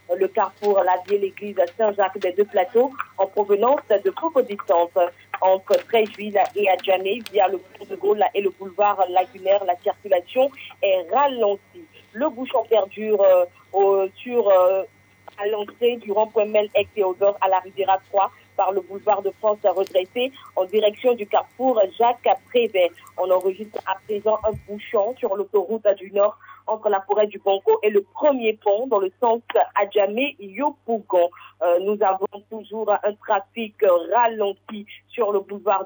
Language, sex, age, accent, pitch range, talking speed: French, female, 40-59, French, 195-230 Hz, 155 wpm